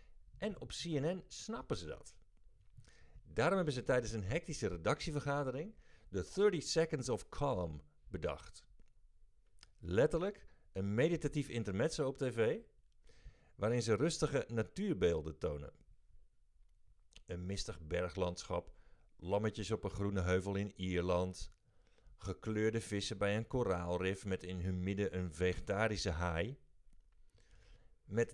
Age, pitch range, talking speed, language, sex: 50-69, 95-145 Hz, 110 wpm, Dutch, male